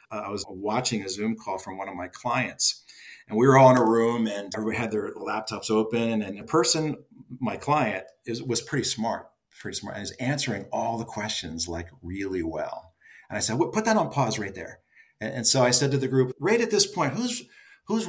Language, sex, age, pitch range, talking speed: English, male, 50-69, 110-155 Hz, 230 wpm